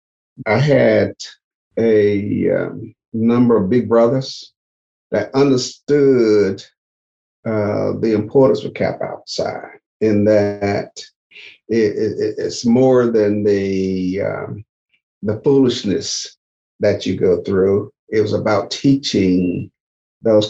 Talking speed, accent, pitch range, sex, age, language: 100 wpm, American, 100-120 Hz, male, 50-69, English